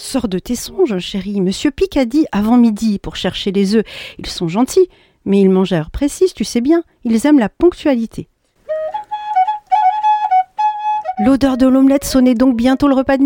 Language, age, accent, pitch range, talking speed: French, 50-69, French, 185-265 Hz, 180 wpm